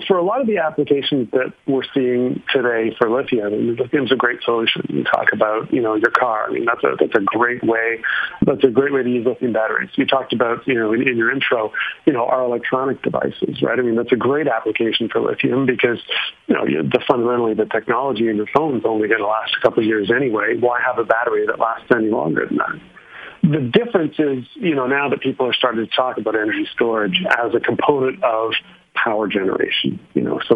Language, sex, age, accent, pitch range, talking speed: English, male, 50-69, American, 115-140 Hz, 230 wpm